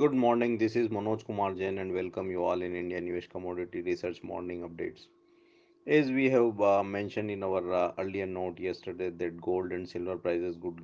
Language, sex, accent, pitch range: English, male, Indian, 90-110 Hz